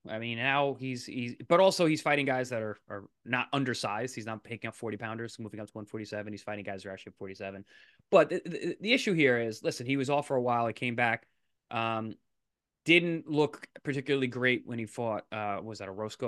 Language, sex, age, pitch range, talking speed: English, male, 20-39, 110-150 Hz, 235 wpm